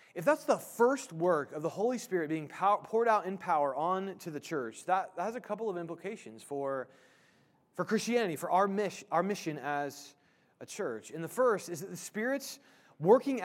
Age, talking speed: 30-49, 175 wpm